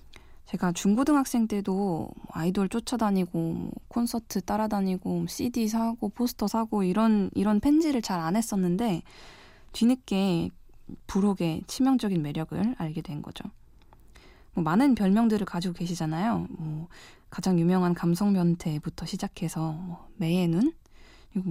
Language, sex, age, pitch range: Korean, female, 20-39, 165-215 Hz